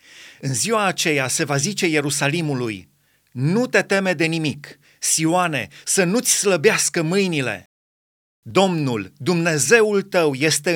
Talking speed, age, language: 115 wpm, 30-49, Romanian